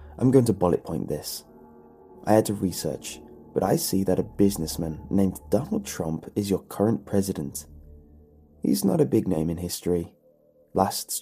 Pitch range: 85-110 Hz